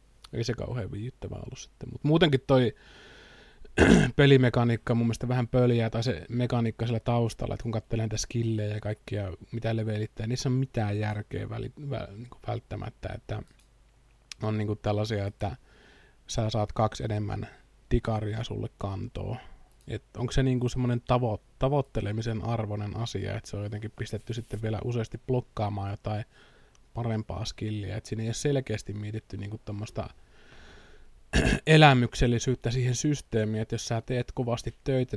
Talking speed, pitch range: 145 wpm, 105-125 Hz